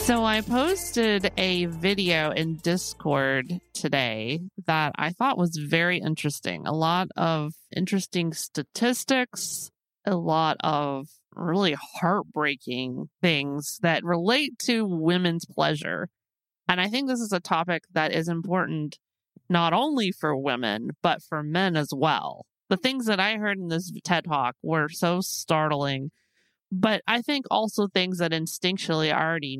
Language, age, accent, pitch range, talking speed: English, 30-49, American, 155-195 Hz, 140 wpm